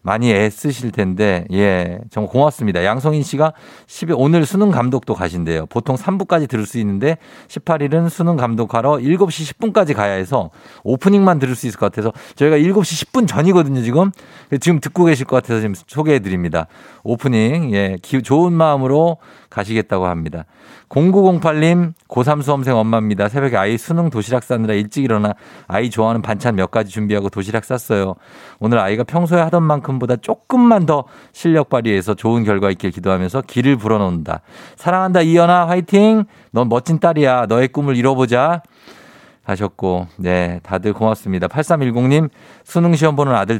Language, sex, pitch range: Korean, male, 105-155 Hz